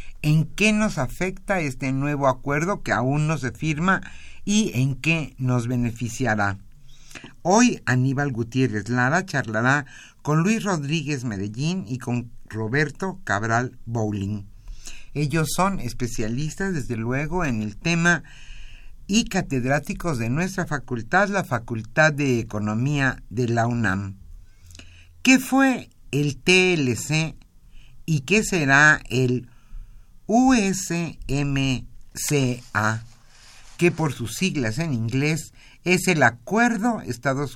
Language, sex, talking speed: Spanish, male, 110 wpm